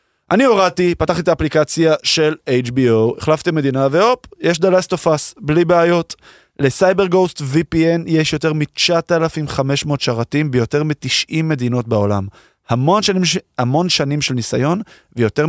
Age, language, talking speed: 20-39, Hebrew, 115 wpm